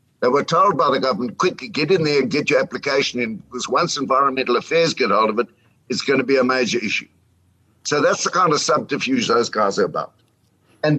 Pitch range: 125-185 Hz